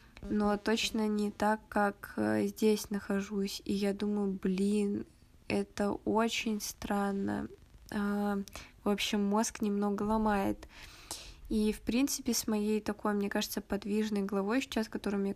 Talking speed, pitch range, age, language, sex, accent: 125 wpm, 200-225 Hz, 20-39, Russian, female, native